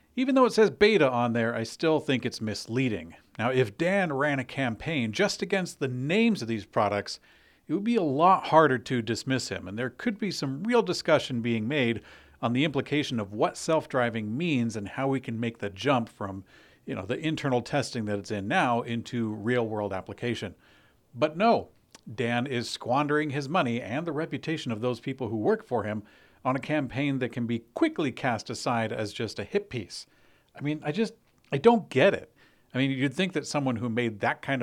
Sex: male